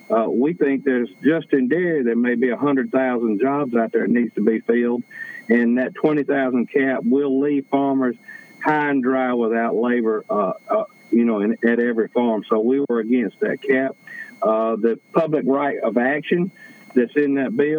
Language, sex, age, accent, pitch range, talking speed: English, male, 50-69, American, 120-140 Hz, 195 wpm